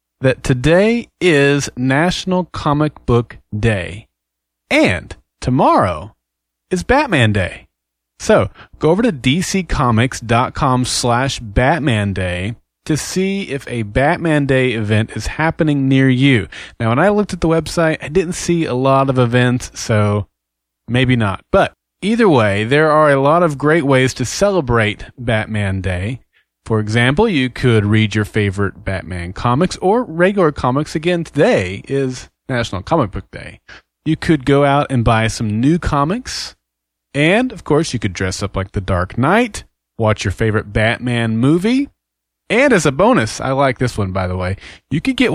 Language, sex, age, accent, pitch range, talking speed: English, male, 30-49, American, 105-145 Hz, 160 wpm